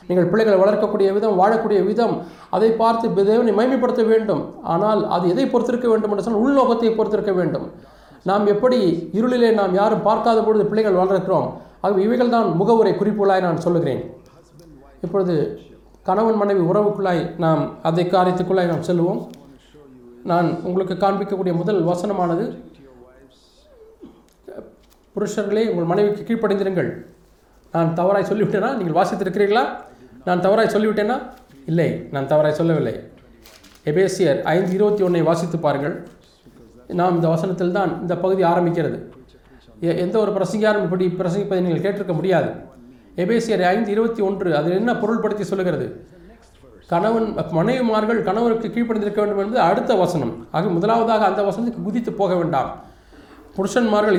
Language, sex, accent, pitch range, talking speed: Tamil, male, native, 175-215 Hz, 125 wpm